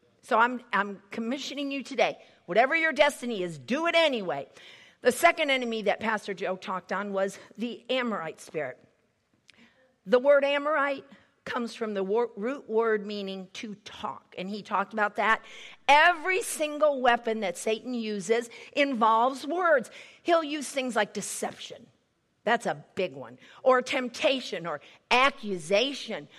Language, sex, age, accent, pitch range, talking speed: English, female, 50-69, American, 215-285 Hz, 140 wpm